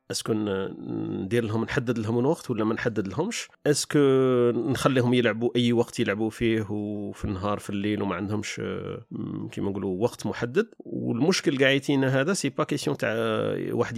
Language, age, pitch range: Arabic, 40-59, 110-135 Hz